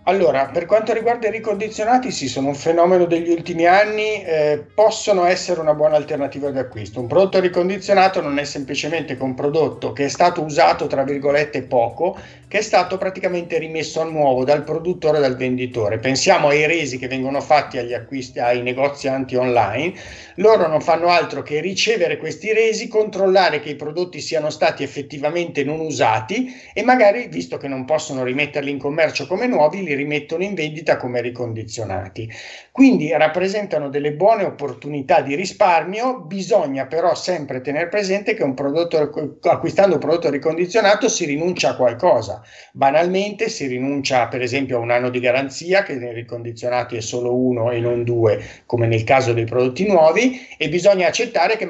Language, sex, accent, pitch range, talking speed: Italian, male, native, 135-185 Hz, 170 wpm